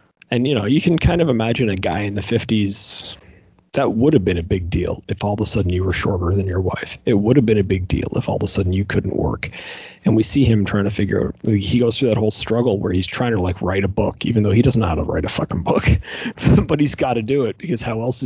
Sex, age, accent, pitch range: male, 30-49, American, 100-120 Hz